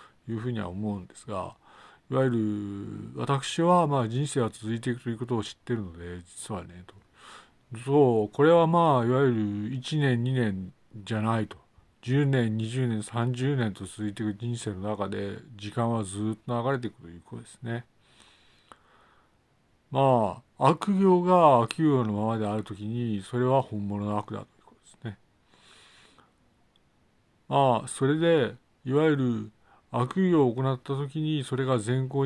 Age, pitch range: 50-69, 105-135 Hz